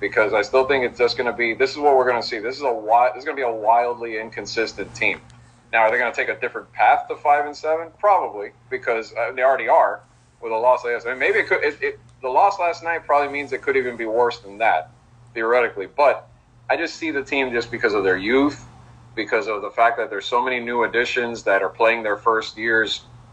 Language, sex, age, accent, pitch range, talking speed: English, male, 40-59, American, 110-130 Hz, 250 wpm